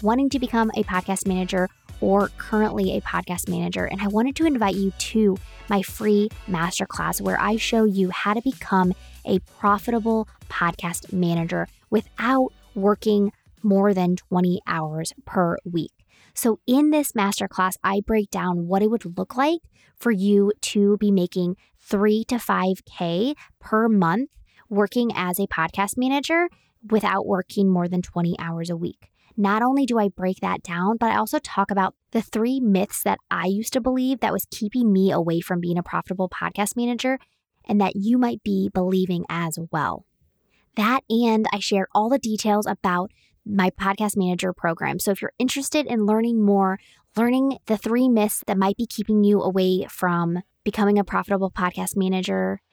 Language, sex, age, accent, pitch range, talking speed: English, female, 20-39, American, 185-225 Hz, 170 wpm